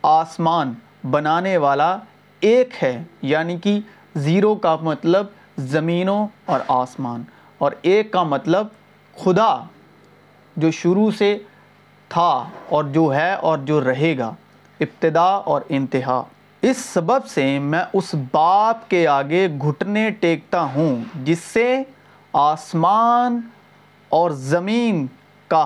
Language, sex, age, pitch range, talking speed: Urdu, male, 40-59, 155-220 Hz, 115 wpm